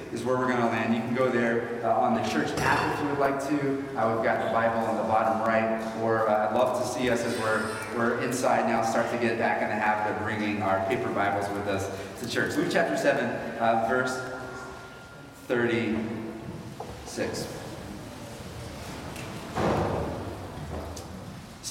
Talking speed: 175 wpm